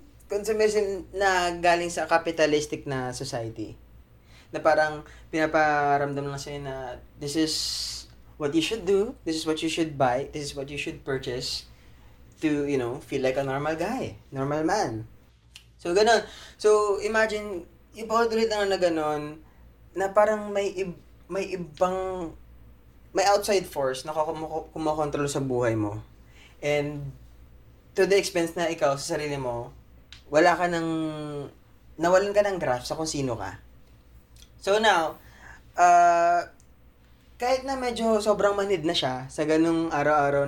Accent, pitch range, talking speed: native, 135-185 Hz, 145 wpm